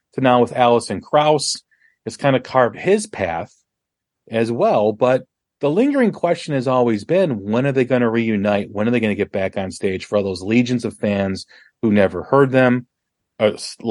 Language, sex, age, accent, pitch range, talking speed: English, male, 40-59, American, 100-130 Hz, 200 wpm